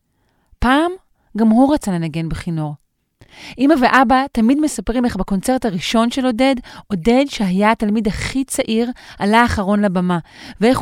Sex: female